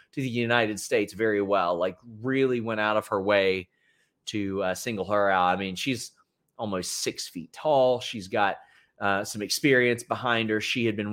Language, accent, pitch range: English, American, 100-150 Hz